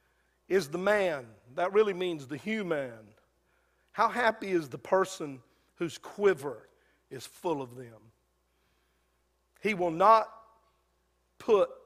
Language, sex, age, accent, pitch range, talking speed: English, male, 50-69, American, 145-180 Hz, 115 wpm